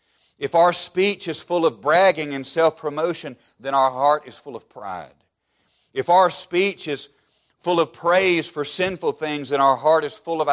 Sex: male